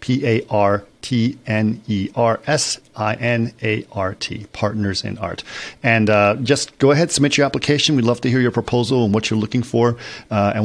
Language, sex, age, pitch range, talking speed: English, male, 50-69, 100-115 Hz, 140 wpm